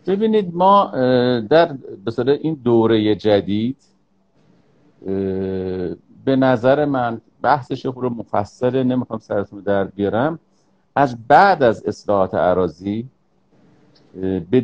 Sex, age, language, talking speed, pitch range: male, 50-69, Persian, 90 wpm, 110-165 Hz